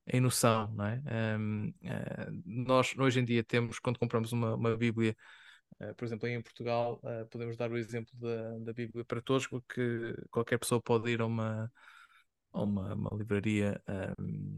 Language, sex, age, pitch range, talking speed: Portuguese, male, 20-39, 115-135 Hz, 180 wpm